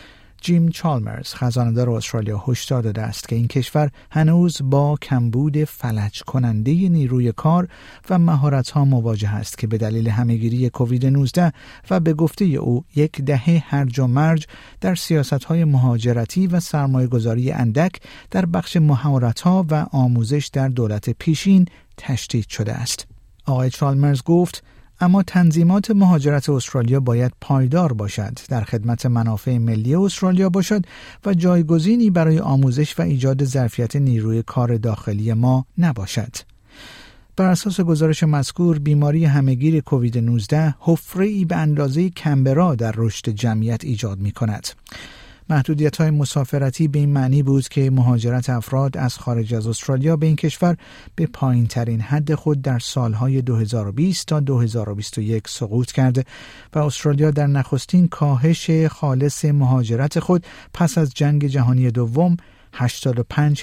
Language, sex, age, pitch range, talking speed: Persian, male, 50-69, 120-155 Hz, 135 wpm